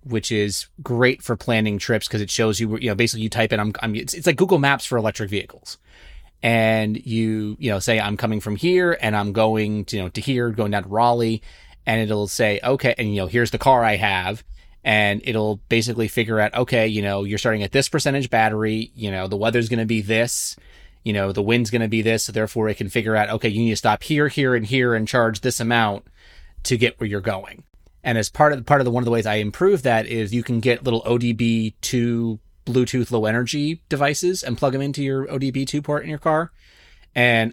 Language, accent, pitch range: English, American, 105-125 Hz